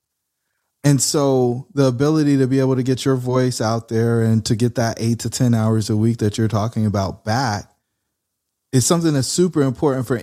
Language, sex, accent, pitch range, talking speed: English, male, American, 110-135 Hz, 200 wpm